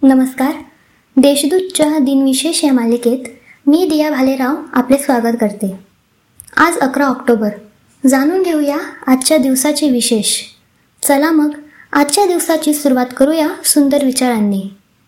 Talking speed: 110 wpm